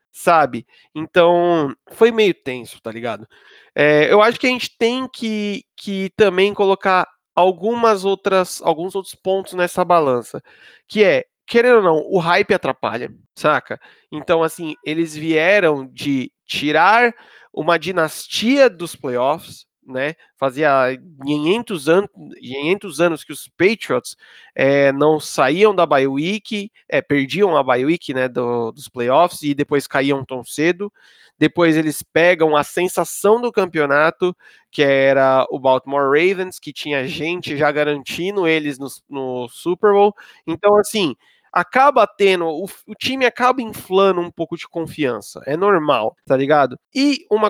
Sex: male